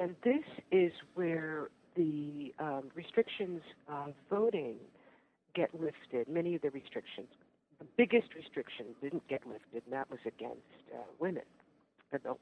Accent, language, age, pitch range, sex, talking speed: American, English, 50-69, 130-175 Hz, female, 135 wpm